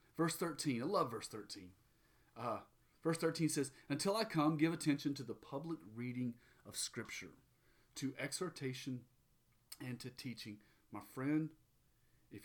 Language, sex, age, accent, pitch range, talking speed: English, male, 40-59, American, 110-145 Hz, 140 wpm